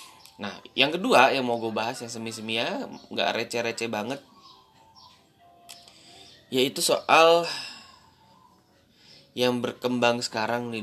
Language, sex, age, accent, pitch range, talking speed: Indonesian, male, 20-39, native, 100-120 Hz, 105 wpm